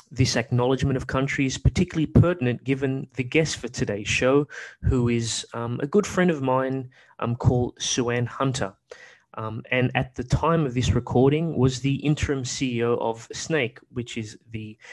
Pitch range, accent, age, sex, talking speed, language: 115-135 Hz, Australian, 20-39, male, 170 wpm, English